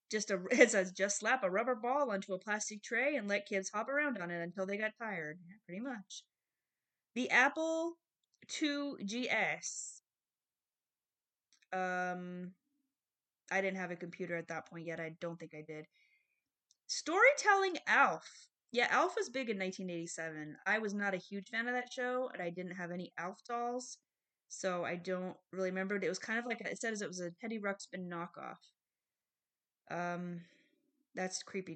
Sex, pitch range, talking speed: female, 175-240 Hz, 170 wpm